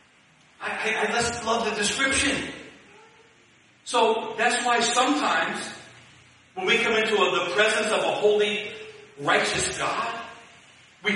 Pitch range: 205-245 Hz